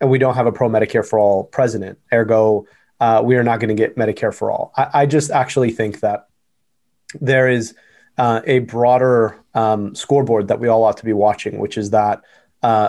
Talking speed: 185 wpm